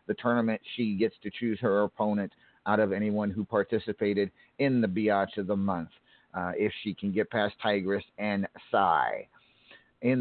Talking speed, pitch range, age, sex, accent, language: 170 wpm, 105-125 Hz, 50-69, male, American, English